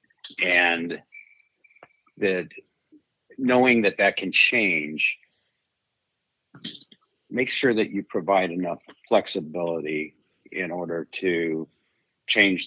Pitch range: 80-95 Hz